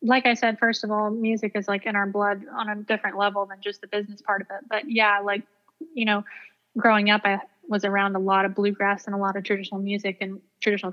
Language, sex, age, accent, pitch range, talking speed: English, female, 20-39, American, 190-210 Hz, 245 wpm